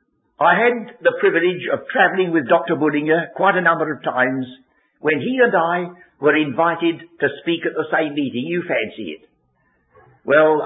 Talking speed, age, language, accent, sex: 170 wpm, 60-79, English, British, male